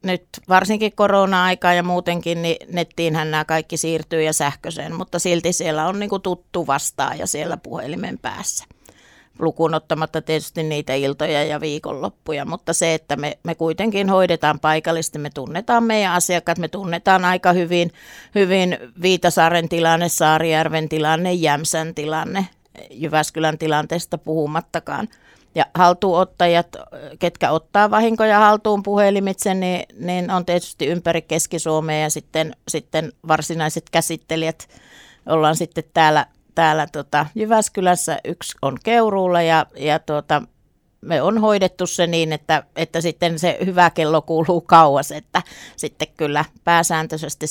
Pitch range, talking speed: 155-180 Hz, 125 wpm